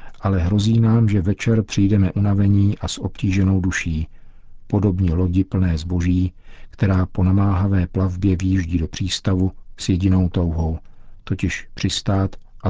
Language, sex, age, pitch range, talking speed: Czech, male, 50-69, 90-105 Hz, 130 wpm